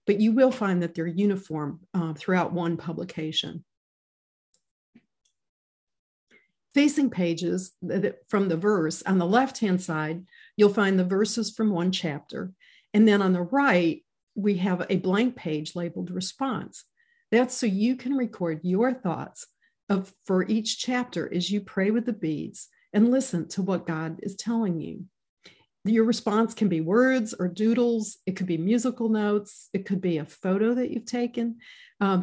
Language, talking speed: English, 155 wpm